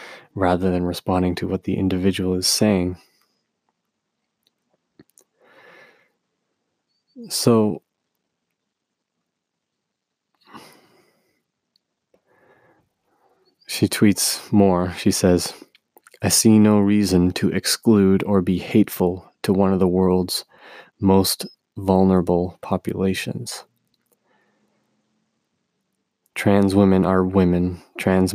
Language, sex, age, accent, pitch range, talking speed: English, male, 20-39, American, 90-100 Hz, 80 wpm